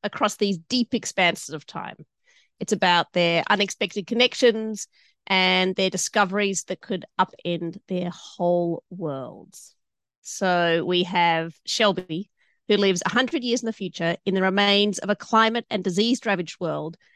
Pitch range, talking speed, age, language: 180-225 Hz, 145 wpm, 30-49, English